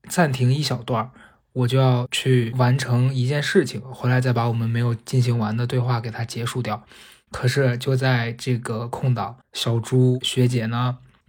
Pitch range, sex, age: 115-130 Hz, male, 20-39